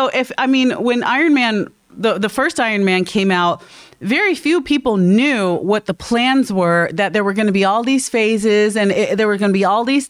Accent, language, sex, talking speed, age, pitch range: American, English, female, 240 wpm, 30-49, 200-270 Hz